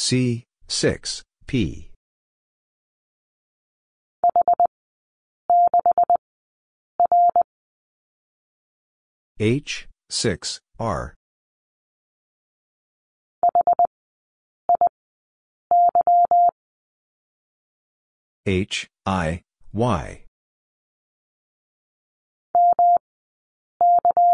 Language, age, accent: English, 50-69, American